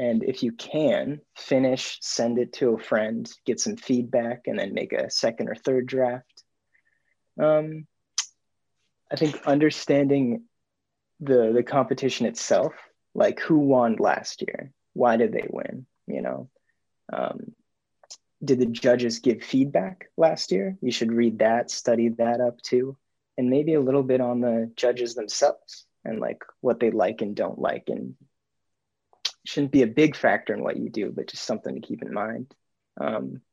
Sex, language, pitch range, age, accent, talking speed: male, English, 120-145 Hz, 20-39, American, 165 wpm